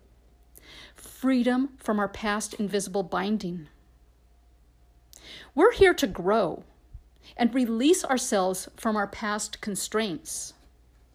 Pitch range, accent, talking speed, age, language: 180-260 Hz, American, 90 wpm, 50-69, English